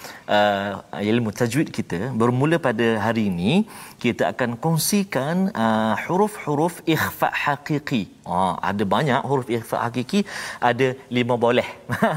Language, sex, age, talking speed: Malayalam, male, 40-59, 120 wpm